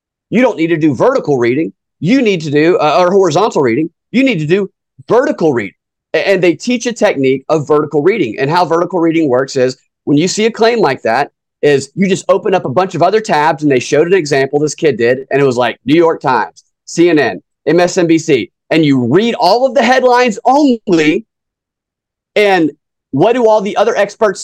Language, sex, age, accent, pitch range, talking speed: English, male, 30-49, American, 145-195 Hz, 205 wpm